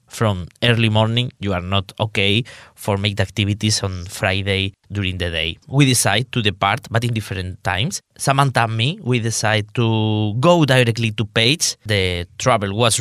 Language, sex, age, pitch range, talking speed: English, male, 20-39, 105-130 Hz, 165 wpm